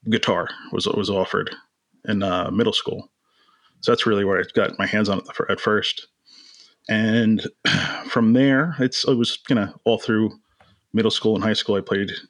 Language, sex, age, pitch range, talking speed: English, male, 30-49, 100-115 Hz, 205 wpm